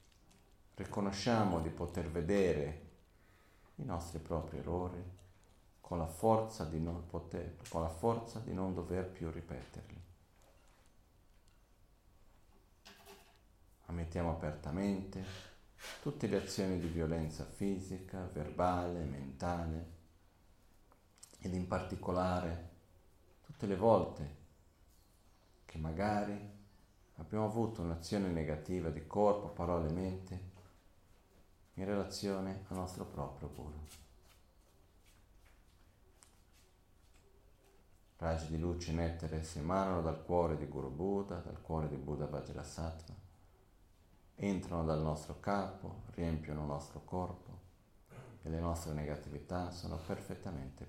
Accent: native